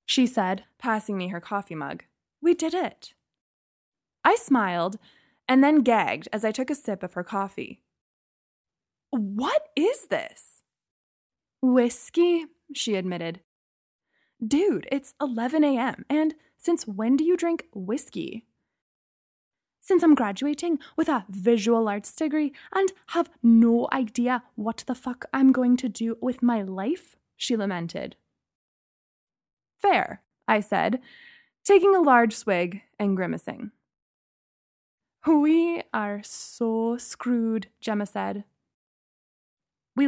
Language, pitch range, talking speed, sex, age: English, 215-295 Hz, 120 wpm, female, 20-39